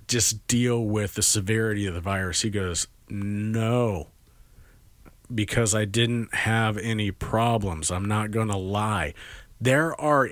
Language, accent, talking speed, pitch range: English, American, 135 wpm, 110-145 Hz